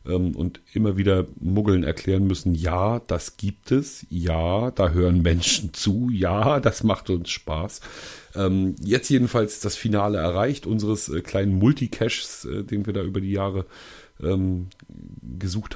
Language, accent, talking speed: German, German, 135 wpm